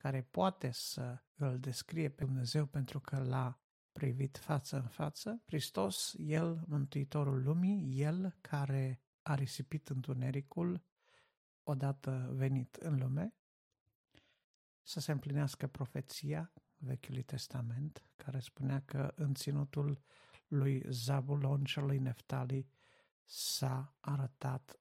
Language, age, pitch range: Romanian, 50-69, 130-150 Hz